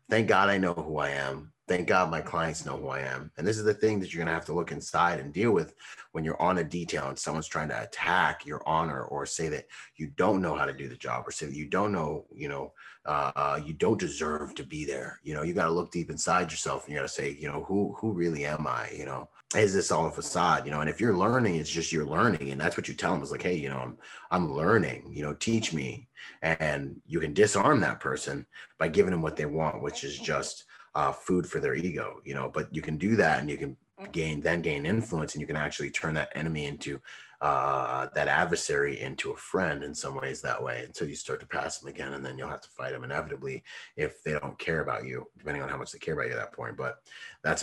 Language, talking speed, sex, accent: English, 265 wpm, male, American